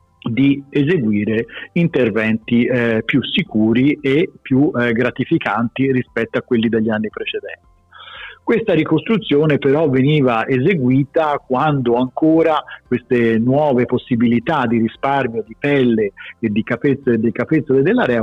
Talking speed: 120 wpm